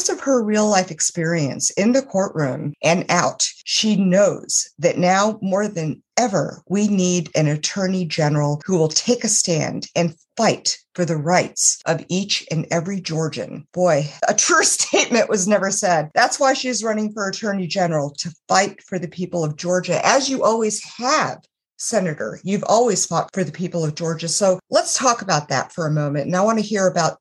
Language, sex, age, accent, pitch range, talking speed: English, female, 50-69, American, 155-210 Hz, 185 wpm